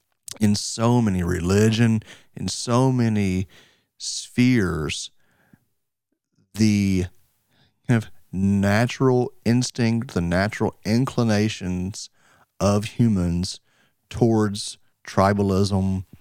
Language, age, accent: English, 40-59, American